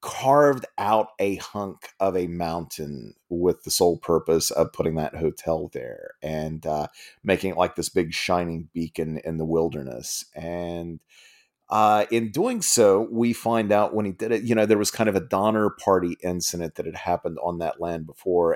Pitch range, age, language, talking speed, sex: 85-105 Hz, 40-59, English, 185 wpm, male